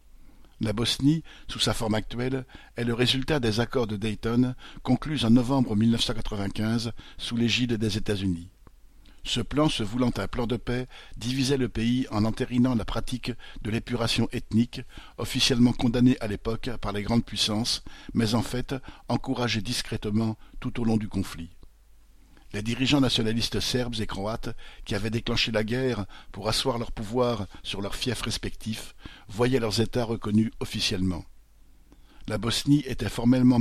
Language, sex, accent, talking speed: French, male, French, 150 wpm